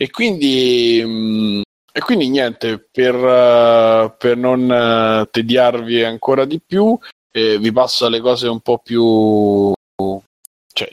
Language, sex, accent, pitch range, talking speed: Italian, male, native, 110-125 Hz, 130 wpm